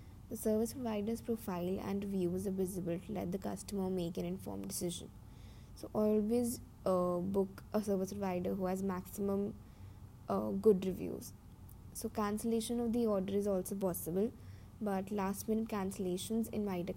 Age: 20-39